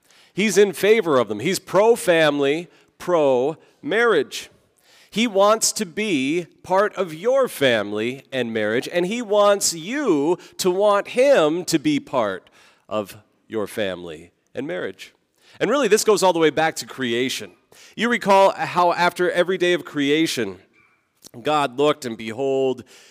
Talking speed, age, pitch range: 145 wpm, 40-59, 125-185 Hz